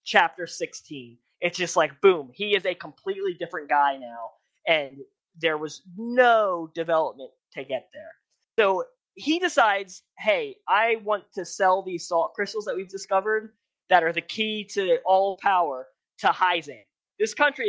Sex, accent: male, American